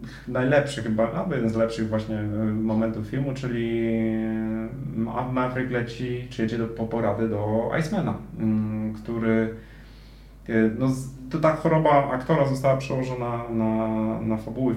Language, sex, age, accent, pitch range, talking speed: Polish, male, 30-49, native, 115-145 Hz, 120 wpm